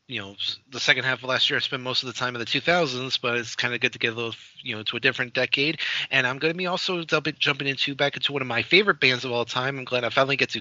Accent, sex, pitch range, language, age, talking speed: American, male, 120-150 Hz, English, 30-49, 315 wpm